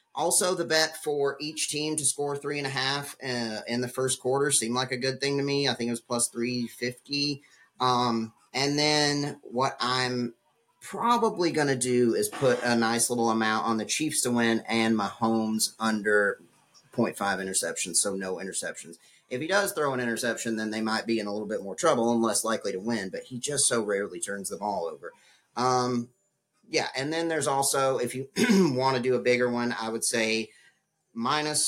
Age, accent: 30-49, American